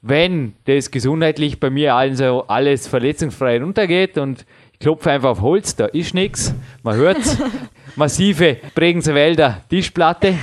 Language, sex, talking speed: German, male, 140 wpm